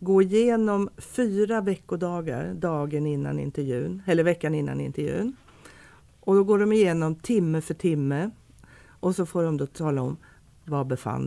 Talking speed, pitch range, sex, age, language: 150 wpm, 150-195 Hz, female, 50-69, Swedish